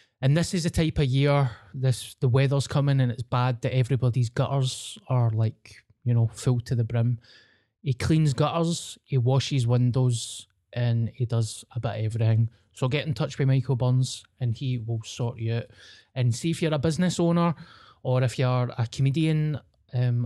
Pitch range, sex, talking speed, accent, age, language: 115-135 Hz, male, 190 wpm, British, 20-39, English